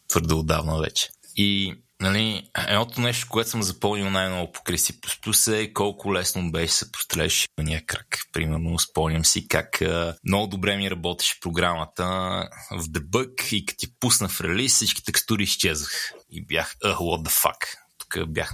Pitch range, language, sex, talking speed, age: 85-105 Hz, Bulgarian, male, 165 wpm, 30-49